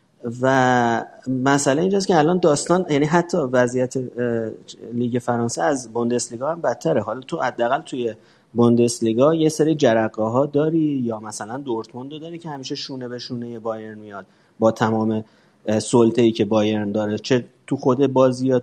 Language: Persian